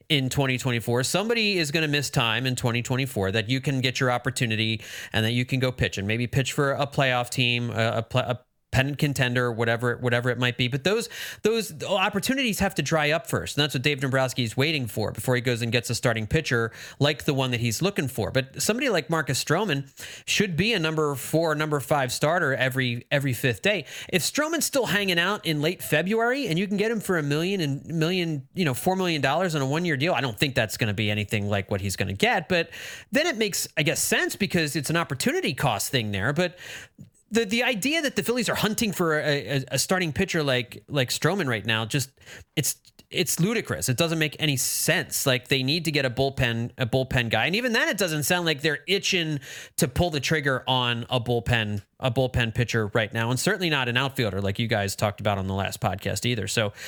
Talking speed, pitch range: 230 wpm, 120-165 Hz